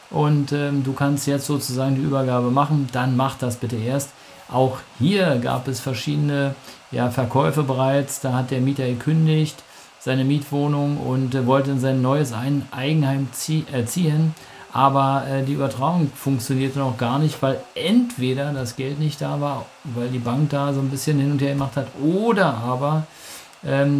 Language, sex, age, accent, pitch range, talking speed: German, male, 50-69, German, 135-155 Hz, 165 wpm